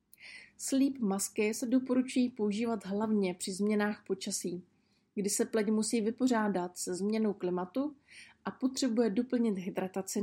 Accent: native